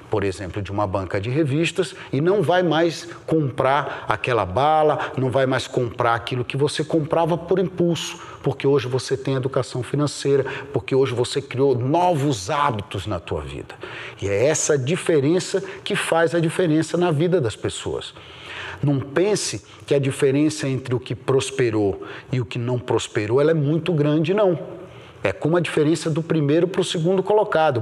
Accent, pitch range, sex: Brazilian, 110-155 Hz, male